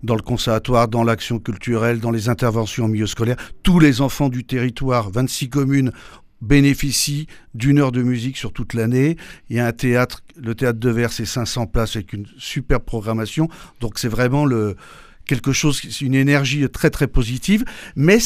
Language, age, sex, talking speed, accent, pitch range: French, 50-69, male, 180 wpm, French, 115-155 Hz